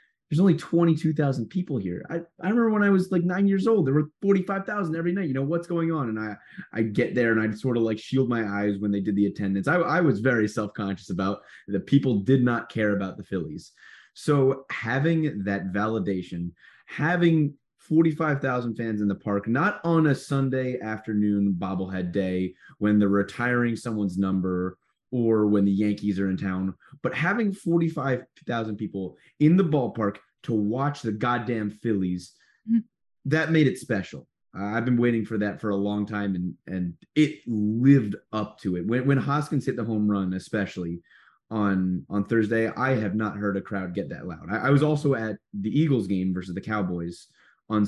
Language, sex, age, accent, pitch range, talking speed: English, male, 20-39, American, 100-150 Hz, 190 wpm